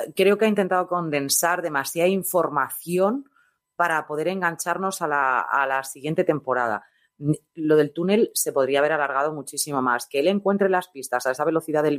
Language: Spanish